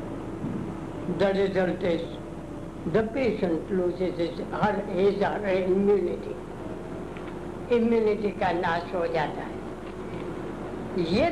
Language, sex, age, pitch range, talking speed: Hindi, female, 60-79, 165-195 Hz, 55 wpm